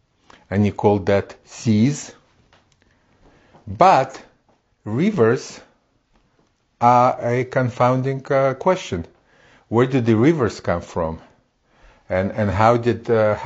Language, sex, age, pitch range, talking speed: English, male, 50-69, 95-120 Hz, 105 wpm